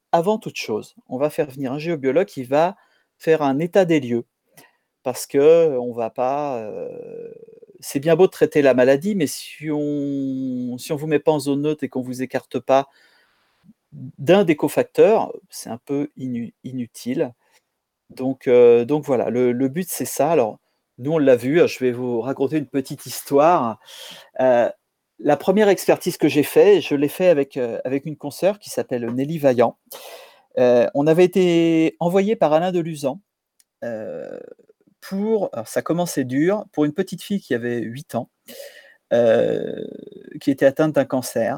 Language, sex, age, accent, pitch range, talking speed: French, male, 40-59, French, 130-180 Hz, 170 wpm